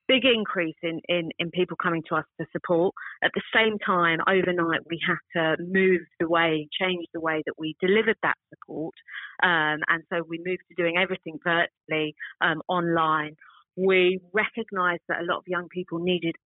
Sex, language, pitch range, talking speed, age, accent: female, English, 155-180 Hz, 180 wpm, 40-59, British